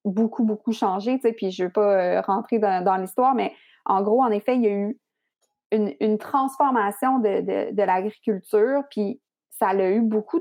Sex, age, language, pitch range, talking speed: female, 30-49, French, 200-240 Hz, 200 wpm